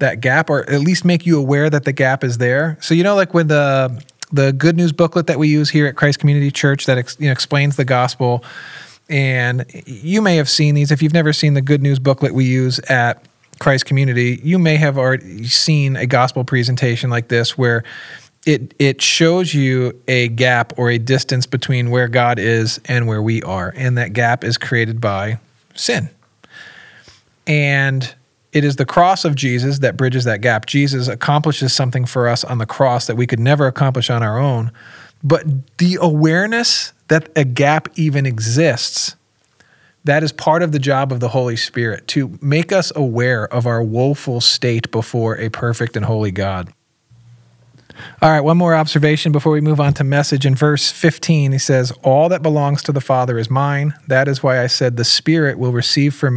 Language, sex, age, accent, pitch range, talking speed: English, male, 40-59, American, 125-150 Hz, 195 wpm